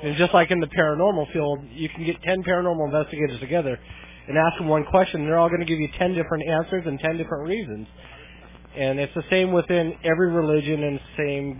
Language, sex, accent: English, male, American